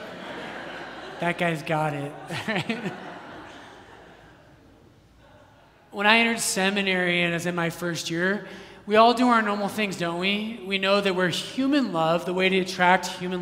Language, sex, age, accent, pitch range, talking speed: English, male, 20-39, American, 160-190 Hz, 150 wpm